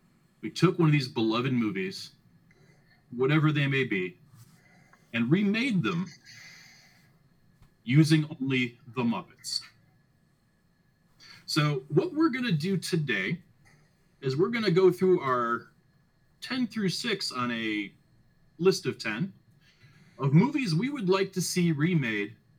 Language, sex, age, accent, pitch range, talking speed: English, male, 30-49, American, 135-180 Hz, 130 wpm